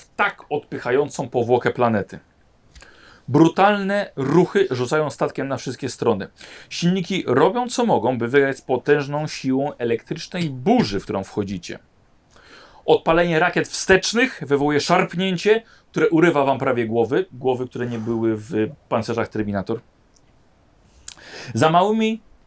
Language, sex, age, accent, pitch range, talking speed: Polish, male, 40-59, native, 115-155 Hz, 115 wpm